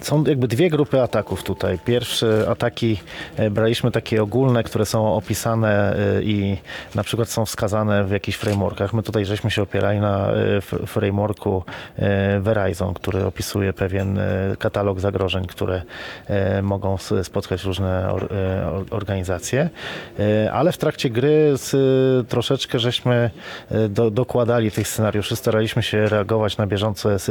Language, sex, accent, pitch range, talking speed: Polish, male, native, 100-120 Hz, 120 wpm